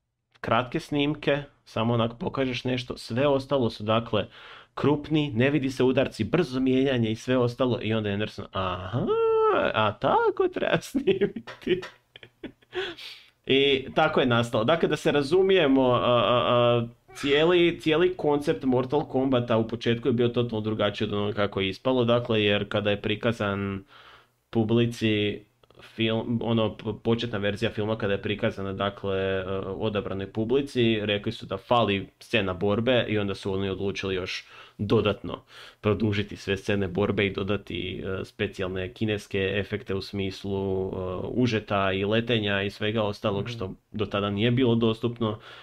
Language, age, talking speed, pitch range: Croatian, 30-49, 145 wpm, 100-125 Hz